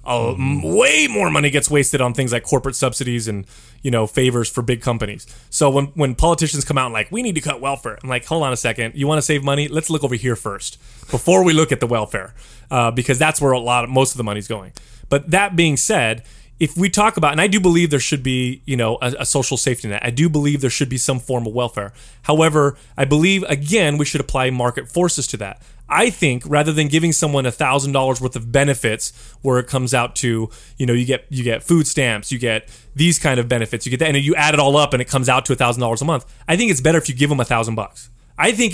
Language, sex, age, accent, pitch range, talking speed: English, male, 20-39, American, 120-150 Hz, 265 wpm